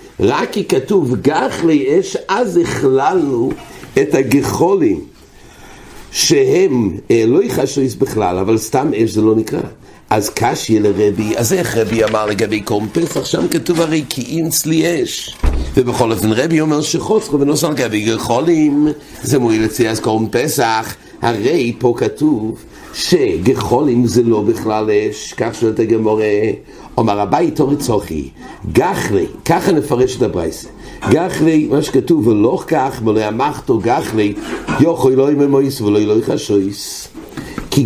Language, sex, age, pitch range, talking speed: English, male, 60-79, 110-160 Hz, 135 wpm